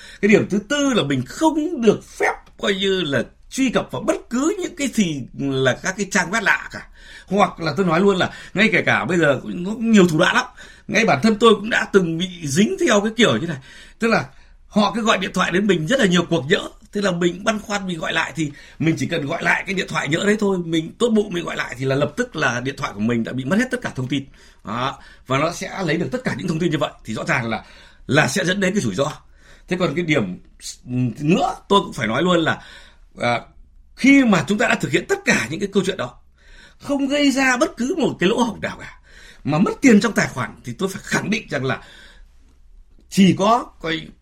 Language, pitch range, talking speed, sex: Vietnamese, 160-220 Hz, 260 wpm, male